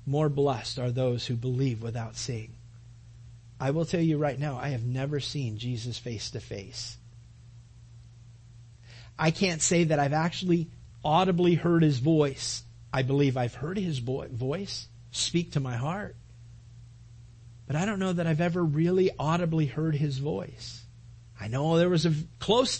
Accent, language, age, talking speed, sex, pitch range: American, English, 40-59, 160 wpm, male, 120-180 Hz